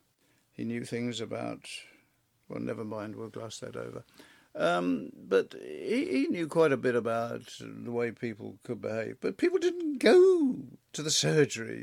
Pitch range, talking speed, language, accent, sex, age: 125-205 Hz, 160 wpm, English, British, male, 60-79